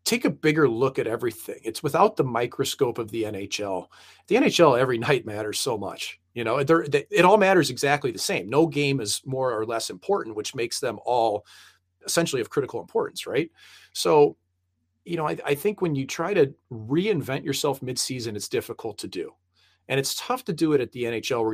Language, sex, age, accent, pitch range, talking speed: English, male, 40-59, American, 110-175 Hz, 200 wpm